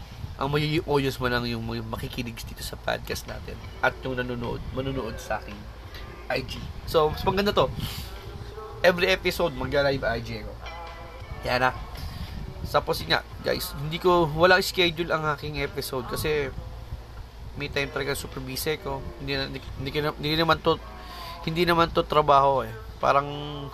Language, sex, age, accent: Filipino, male, 20-39, native